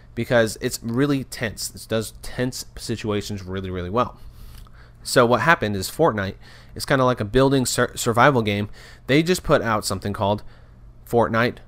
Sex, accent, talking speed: male, American, 165 wpm